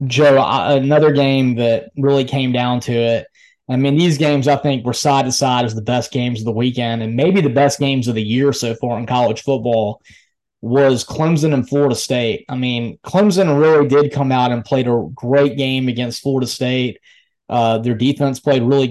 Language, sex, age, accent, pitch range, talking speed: English, male, 20-39, American, 125-145 Hz, 205 wpm